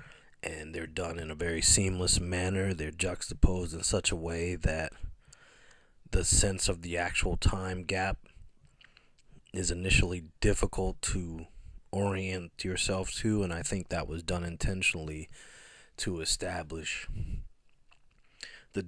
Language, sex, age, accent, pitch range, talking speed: English, male, 30-49, American, 80-95 Hz, 125 wpm